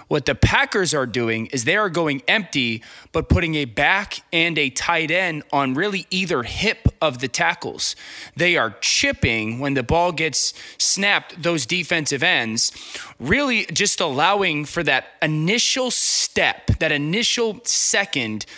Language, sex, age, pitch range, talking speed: English, male, 20-39, 135-185 Hz, 150 wpm